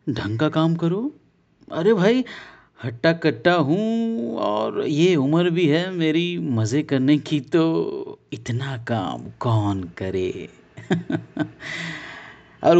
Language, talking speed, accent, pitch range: Hindi, 110 wpm, native, 110-170 Hz